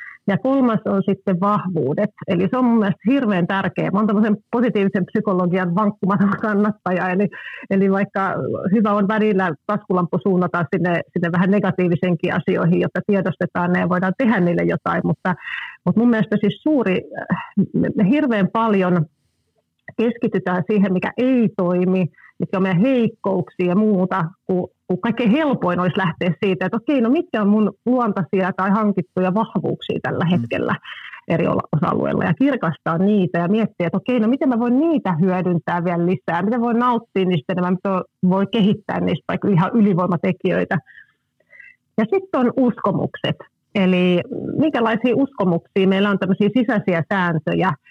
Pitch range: 180-220 Hz